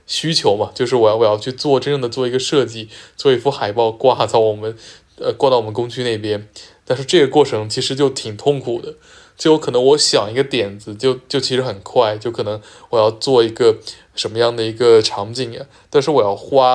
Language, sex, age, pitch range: Chinese, male, 20-39, 115-145 Hz